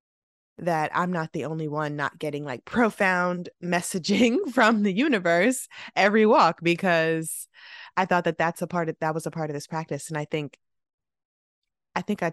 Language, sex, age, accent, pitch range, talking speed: English, female, 20-39, American, 150-180 Hz, 180 wpm